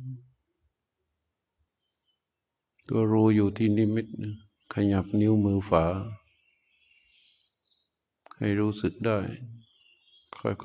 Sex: male